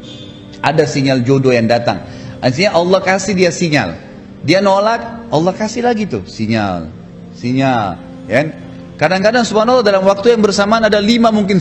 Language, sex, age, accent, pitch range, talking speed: Indonesian, male, 30-49, native, 120-175 Hz, 140 wpm